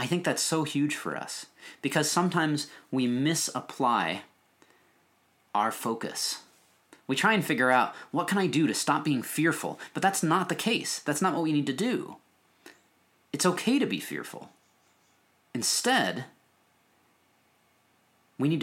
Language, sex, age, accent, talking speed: English, male, 30-49, American, 150 wpm